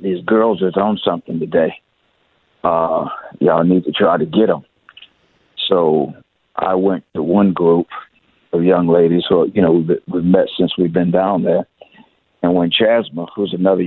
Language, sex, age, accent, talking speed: English, male, 50-69, American, 165 wpm